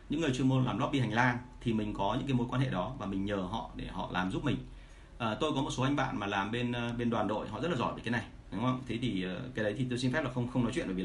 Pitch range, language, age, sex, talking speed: 115-130 Hz, Vietnamese, 30-49, male, 340 wpm